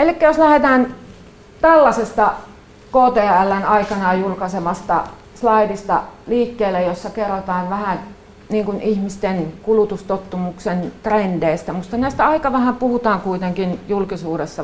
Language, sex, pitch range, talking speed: Finnish, female, 175-230 Hz, 95 wpm